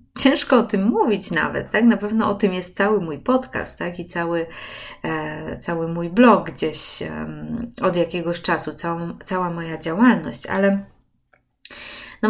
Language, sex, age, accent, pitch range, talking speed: Polish, female, 20-39, native, 180-230 Hz, 155 wpm